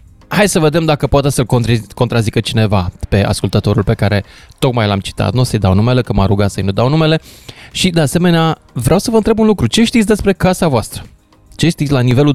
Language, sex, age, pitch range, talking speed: Romanian, male, 20-39, 115-150 Hz, 220 wpm